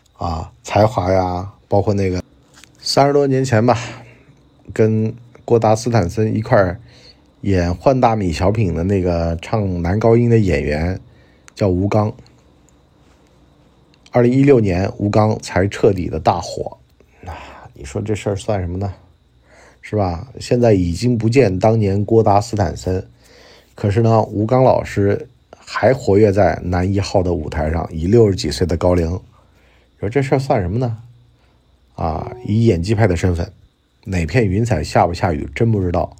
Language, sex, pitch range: Chinese, male, 90-115 Hz